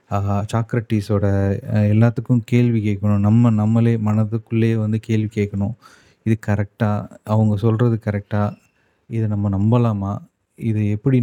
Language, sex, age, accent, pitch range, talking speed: Tamil, male, 30-49, native, 105-120 Hz, 110 wpm